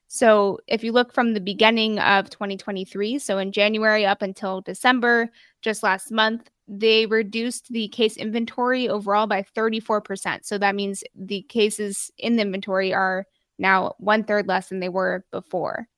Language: English